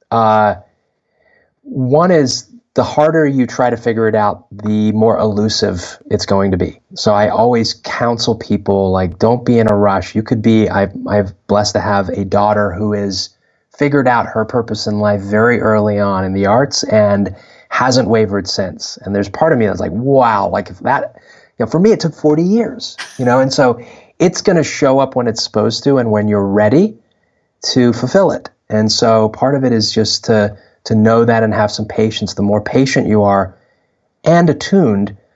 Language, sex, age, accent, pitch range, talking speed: English, male, 30-49, American, 100-115 Hz, 200 wpm